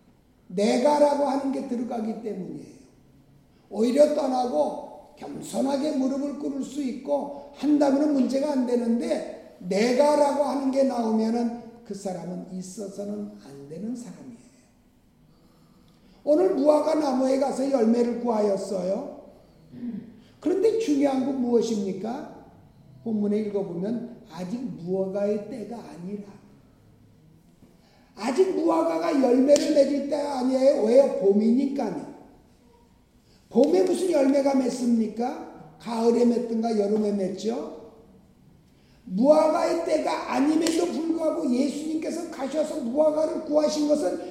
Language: Korean